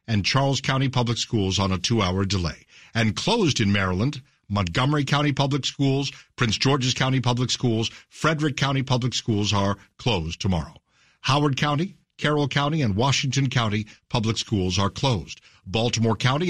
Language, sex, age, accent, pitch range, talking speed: English, male, 60-79, American, 105-140 Hz, 155 wpm